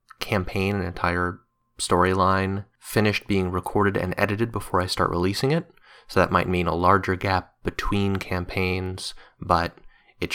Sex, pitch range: male, 90-100 Hz